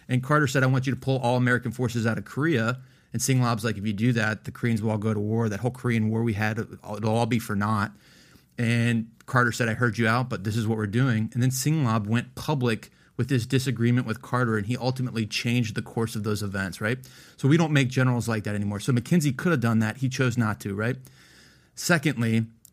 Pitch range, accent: 110-130 Hz, American